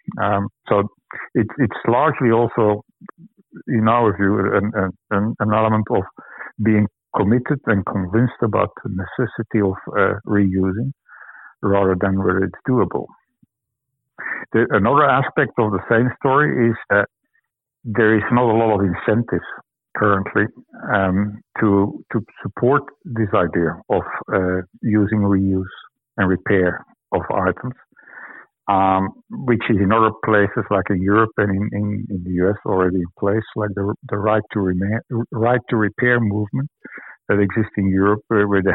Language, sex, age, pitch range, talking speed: English, male, 60-79, 100-115 Hz, 140 wpm